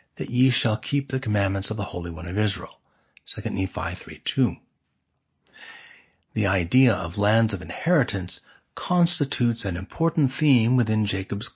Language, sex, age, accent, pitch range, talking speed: English, male, 60-79, American, 95-125 Hz, 145 wpm